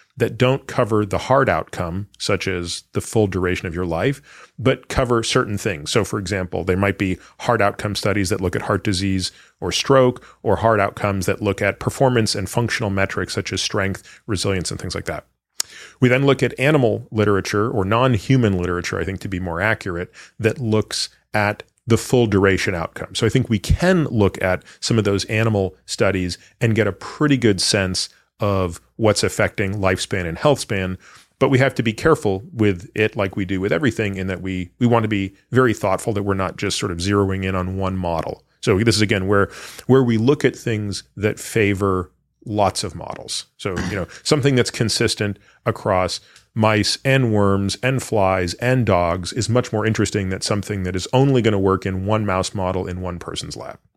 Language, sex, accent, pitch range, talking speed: English, male, American, 95-115 Hz, 200 wpm